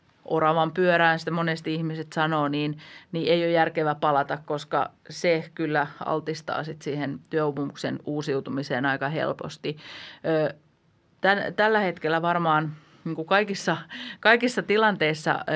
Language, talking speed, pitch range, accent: Finnish, 105 wpm, 150-175 Hz, native